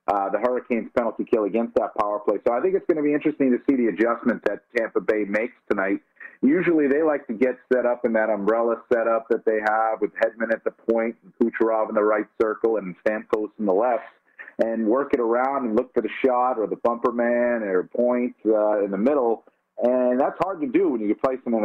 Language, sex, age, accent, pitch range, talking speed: English, male, 40-59, American, 110-145 Hz, 225 wpm